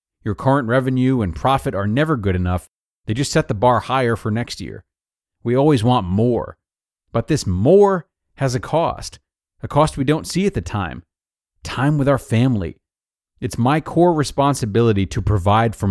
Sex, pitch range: male, 100-150 Hz